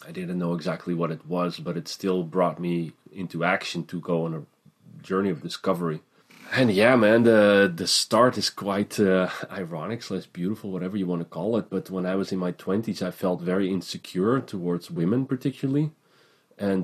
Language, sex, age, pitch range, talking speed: English, male, 30-49, 90-115 Hz, 195 wpm